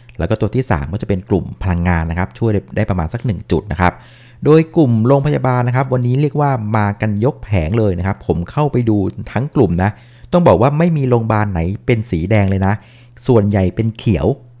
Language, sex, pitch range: Thai, male, 100-125 Hz